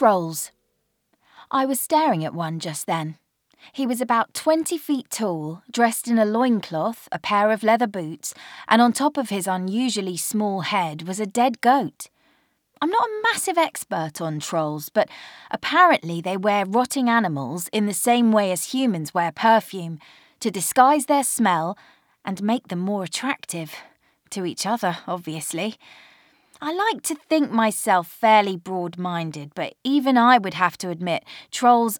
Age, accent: 20-39, British